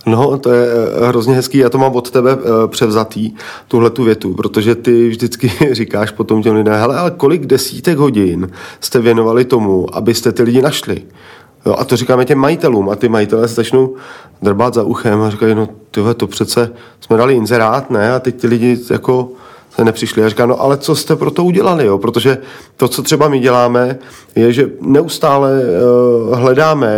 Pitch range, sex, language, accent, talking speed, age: 115-130 Hz, male, Czech, native, 185 wpm, 40-59